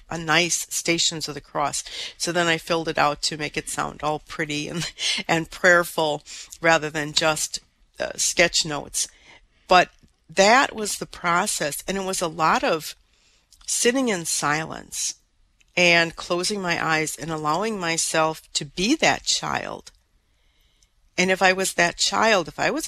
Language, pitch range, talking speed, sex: English, 155-185 Hz, 160 wpm, female